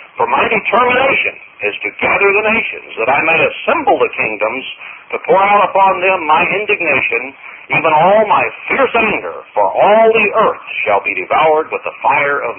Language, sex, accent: English, male, American